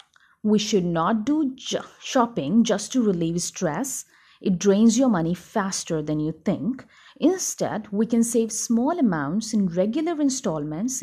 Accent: native